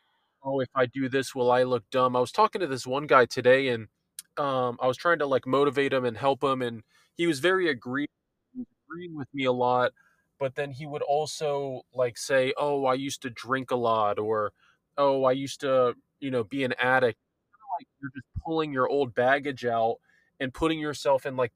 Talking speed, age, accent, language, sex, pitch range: 215 wpm, 20-39, American, English, male, 125-155 Hz